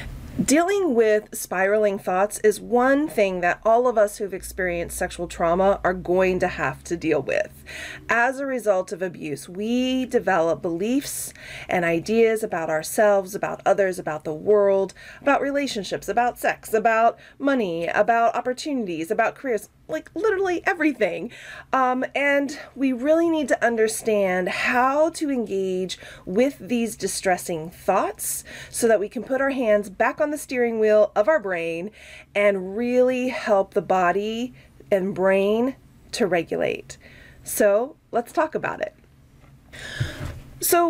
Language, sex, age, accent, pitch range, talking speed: English, female, 30-49, American, 190-255 Hz, 140 wpm